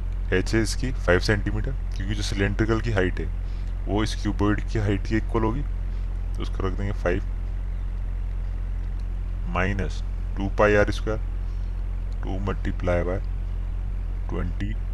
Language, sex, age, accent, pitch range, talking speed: Hindi, male, 20-39, native, 90-100 Hz, 135 wpm